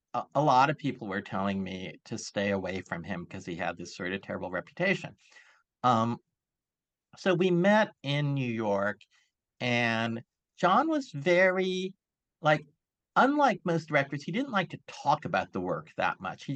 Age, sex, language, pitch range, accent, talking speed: 50-69, male, English, 115-165 Hz, American, 165 wpm